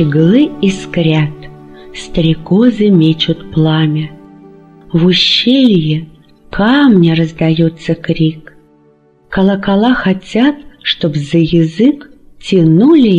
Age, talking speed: 40-59, 75 wpm